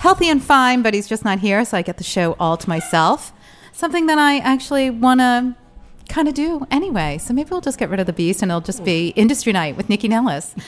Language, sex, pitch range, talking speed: English, female, 180-245 Hz, 245 wpm